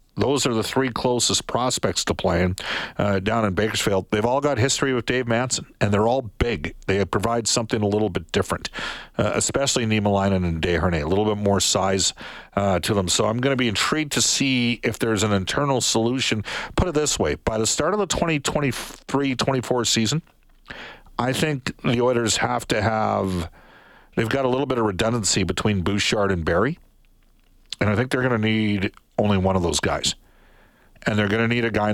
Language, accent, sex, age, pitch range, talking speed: English, American, male, 50-69, 95-125 Hz, 195 wpm